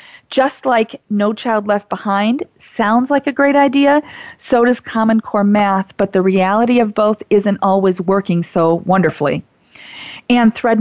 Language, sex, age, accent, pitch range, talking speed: English, female, 40-59, American, 185-235 Hz, 155 wpm